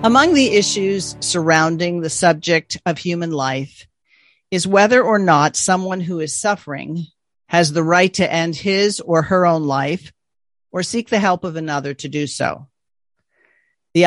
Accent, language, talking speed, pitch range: American, English, 160 wpm, 160-200 Hz